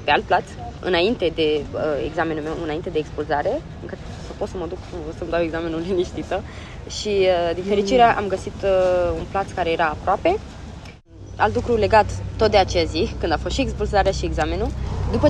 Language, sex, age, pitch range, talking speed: Romanian, female, 20-39, 170-210 Hz, 175 wpm